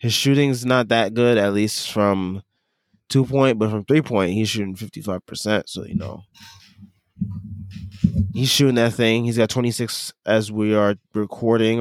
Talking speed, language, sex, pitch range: 145 wpm, English, male, 100-125 Hz